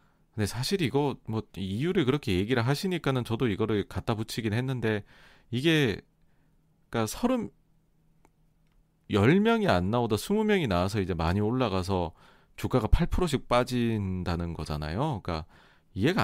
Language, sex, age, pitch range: Korean, male, 30-49, 95-150 Hz